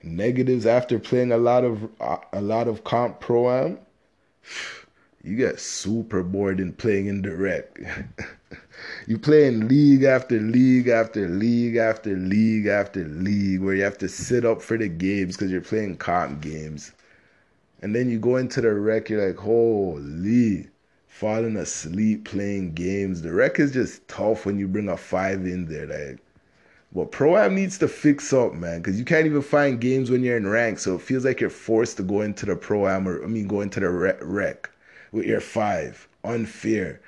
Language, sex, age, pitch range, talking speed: English, male, 20-39, 100-125 Hz, 185 wpm